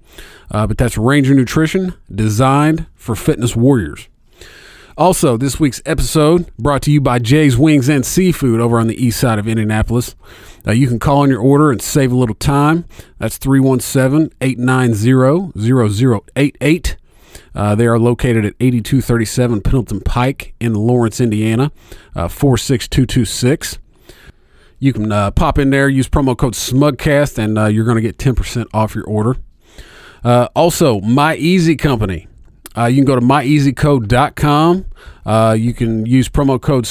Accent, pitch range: American, 115-145 Hz